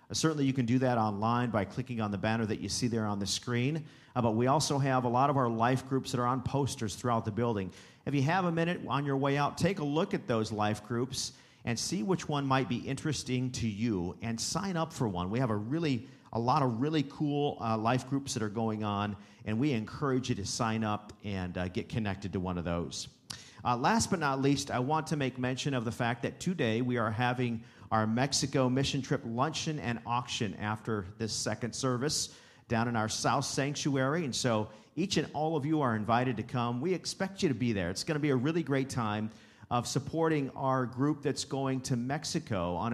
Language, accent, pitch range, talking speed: English, American, 115-140 Hz, 230 wpm